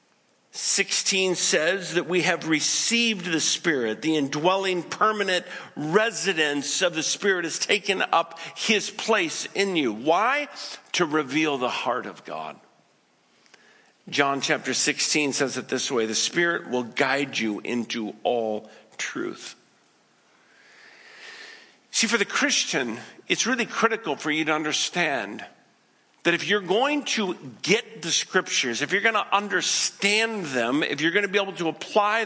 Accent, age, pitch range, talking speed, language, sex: American, 50-69, 150-210 Hz, 145 wpm, English, male